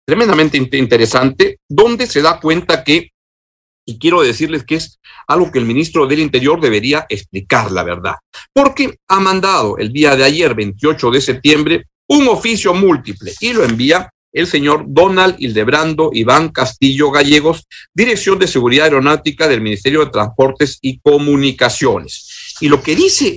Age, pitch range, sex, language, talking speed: 50-69, 125-165 Hz, male, Spanish, 150 wpm